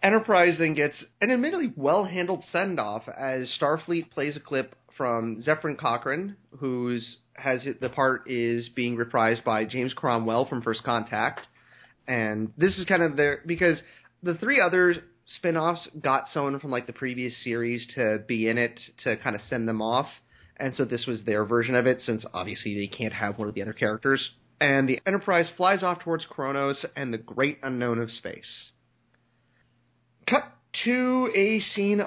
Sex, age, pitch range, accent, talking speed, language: male, 30-49, 120-170 Hz, American, 170 wpm, English